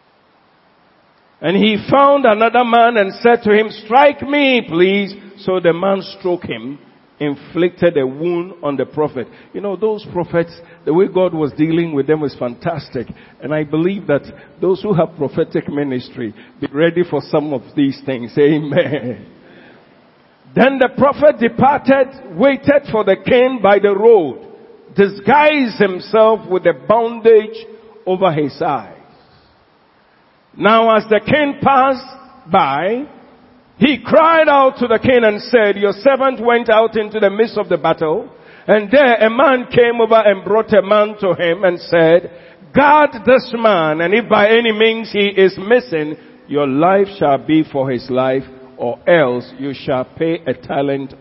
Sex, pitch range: male, 160-230 Hz